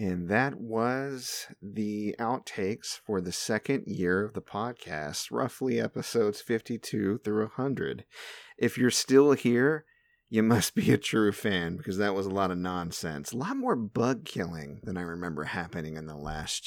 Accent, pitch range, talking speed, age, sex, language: American, 90-115 Hz, 165 wpm, 30-49, male, English